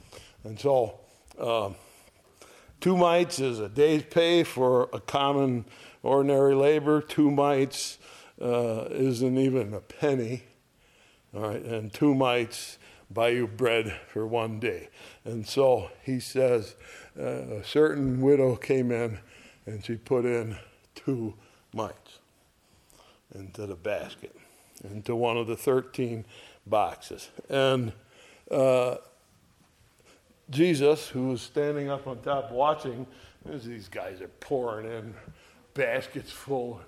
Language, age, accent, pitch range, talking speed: English, 60-79, American, 115-140 Hz, 120 wpm